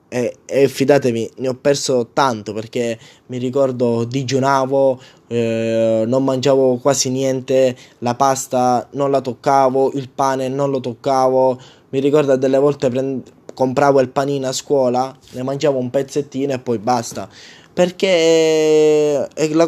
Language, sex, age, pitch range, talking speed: Italian, male, 20-39, 125-150 Hz, 135 wpm